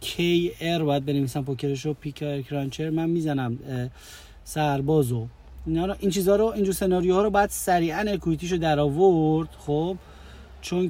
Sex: male